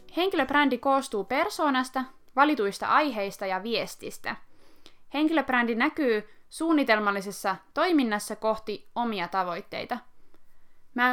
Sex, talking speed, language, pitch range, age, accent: female, 80 wpm, Finnish, 205-280 Hz, 20-39, native